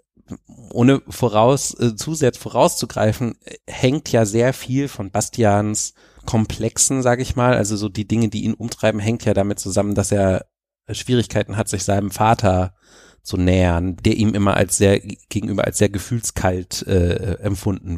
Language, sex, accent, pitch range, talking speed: German, male, German, 100-115 Hz, 155 wpm